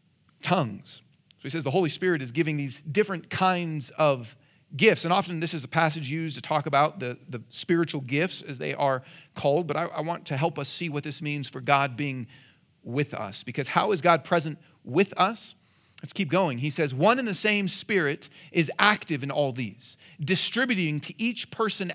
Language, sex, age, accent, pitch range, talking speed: English, male, 40-59, American, 150-205 Hz, 200 wpm